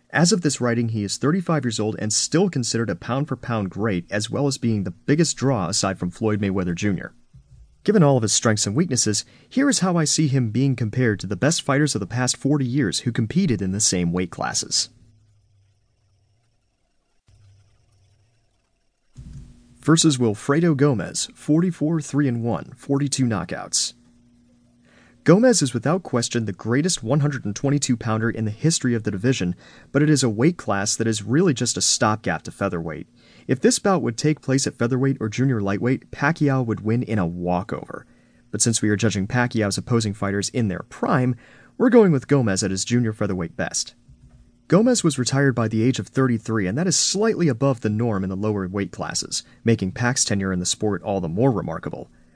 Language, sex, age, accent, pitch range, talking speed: English, male, 30-49, American, 105-140 Hz, 180 wpm